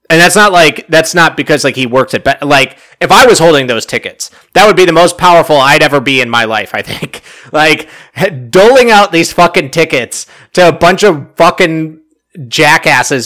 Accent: American